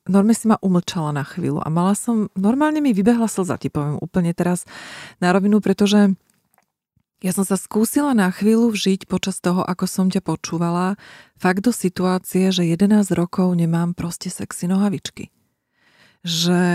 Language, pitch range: Slovak, 175-195 Hz